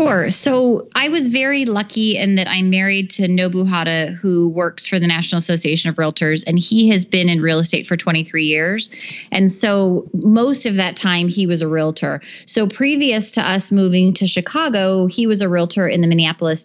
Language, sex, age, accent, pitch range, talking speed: English, female, 30-49, American, 165-200 Hz, 195 wpm